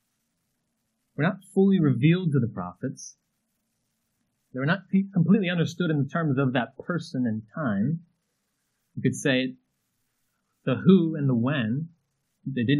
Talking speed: 135 wpm